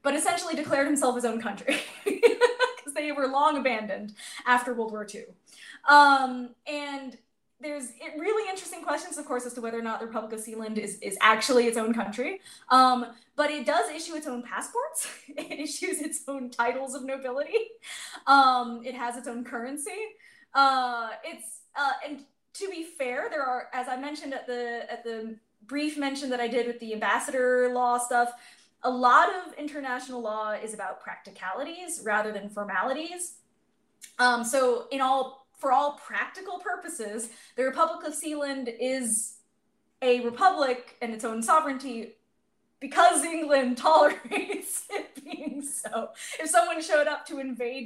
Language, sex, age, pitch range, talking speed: English, female, 20-39, 235-305 Hz, 160 wpm